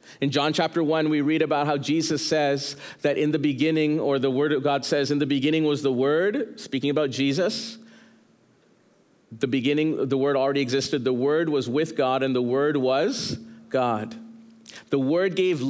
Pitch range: 140-180 Hz